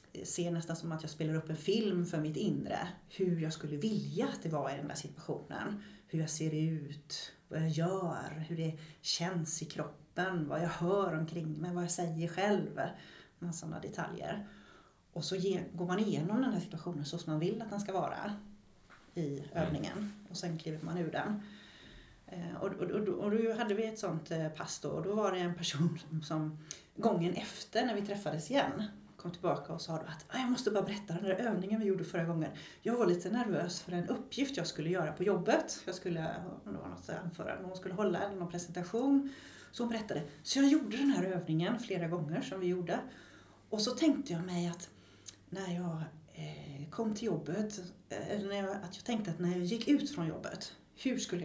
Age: 30-49